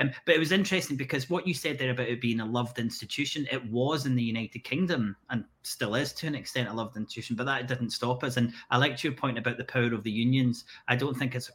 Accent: British